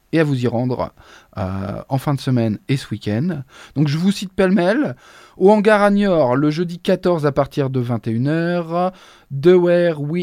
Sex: male